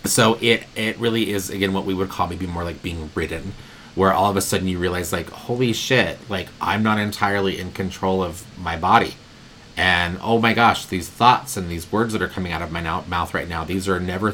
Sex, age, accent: male, 30-49, American